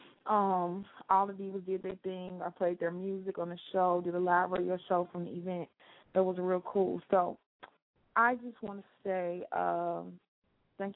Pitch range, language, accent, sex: 180-220 Hz, English, American, female